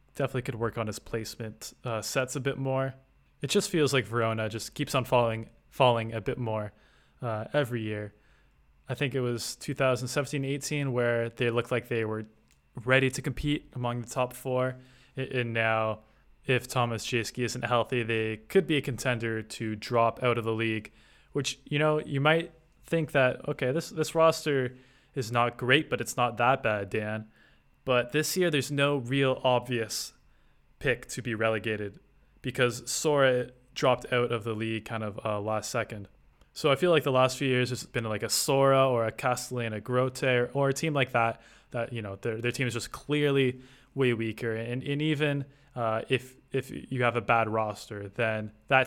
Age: 20-39